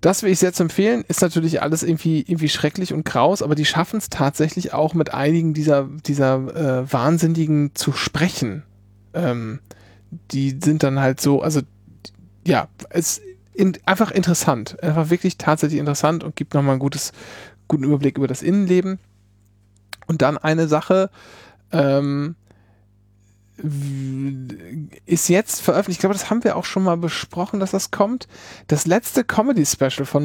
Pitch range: 135-175 Hz